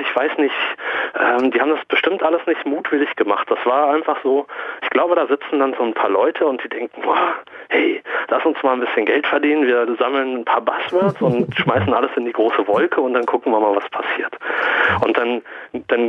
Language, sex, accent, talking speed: German, male, German, 215 wpm